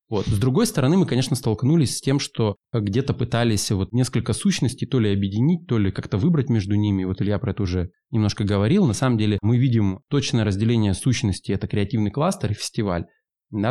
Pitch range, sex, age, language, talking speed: 100-130 Hz, male, 20-39, Russian, 185 wpm